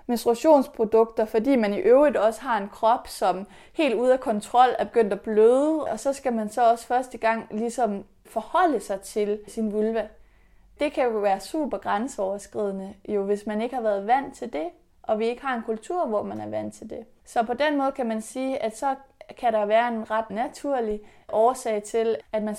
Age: 20-39